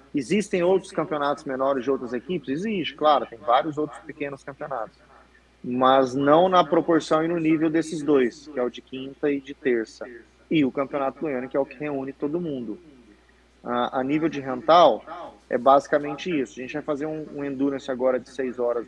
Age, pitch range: 20-39, 130-155 Hz